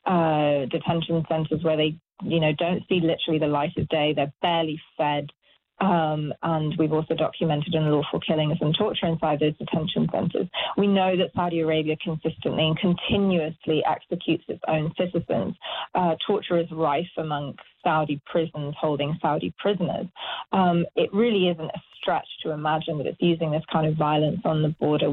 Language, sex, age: Danish, female, 30-49